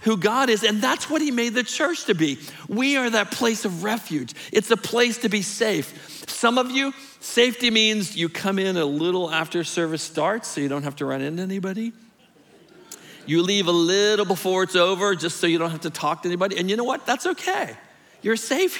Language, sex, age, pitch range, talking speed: English, male, 50-69, 180-235 Hz, 220 wpm